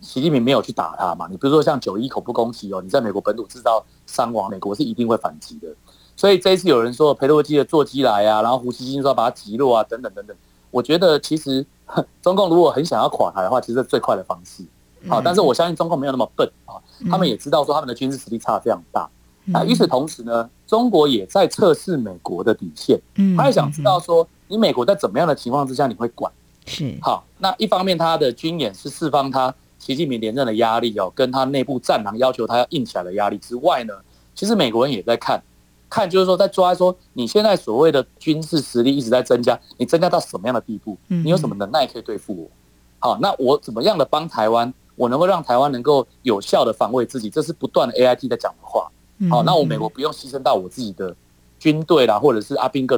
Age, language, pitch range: 30-49, Chinese, 115-160 Hz